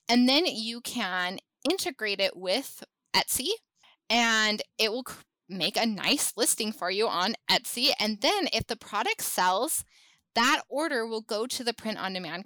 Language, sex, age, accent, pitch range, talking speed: English, female, 20-39, American, 205-265 Hz, 165 wpm